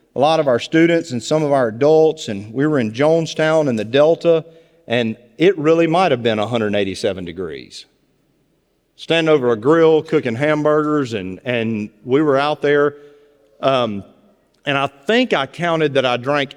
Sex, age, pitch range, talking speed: male, 40-59, 145-240 Hz, 170 wpm